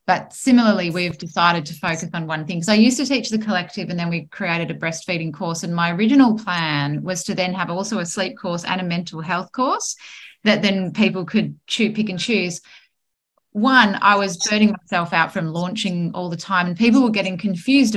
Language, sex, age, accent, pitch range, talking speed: English, female, 30-49, Australian, 180-220 Hz, 210 wpm